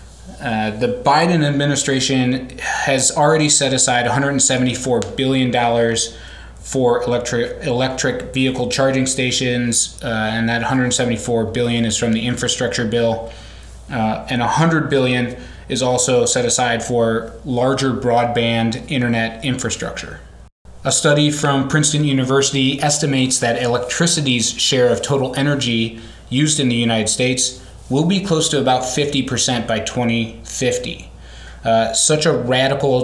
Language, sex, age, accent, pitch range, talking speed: English, male, 20-39, American, 115-135 Hz, 120 wpm